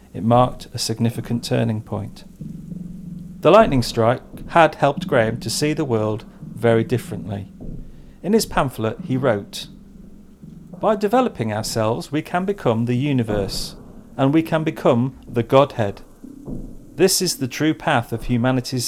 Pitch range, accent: 115-160 Hz, British